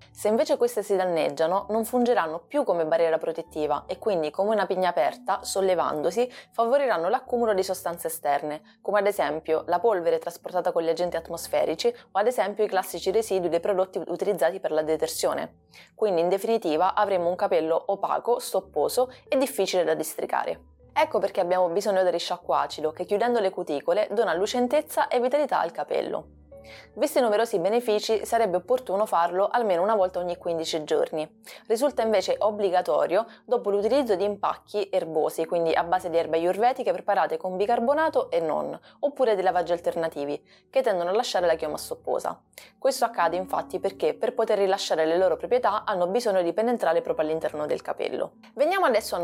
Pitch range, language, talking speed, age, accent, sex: 165-225 Hz, Italian, 170 wpm, 20-39, native, female